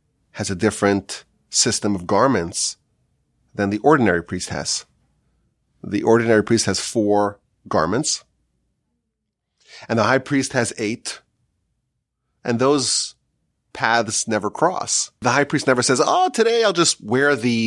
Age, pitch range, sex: 30-49, 110-160 Hz, male